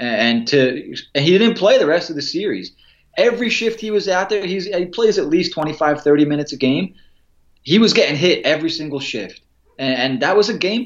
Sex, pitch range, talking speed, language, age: male, 130-185 Hz, 220 wpm, English, 20-39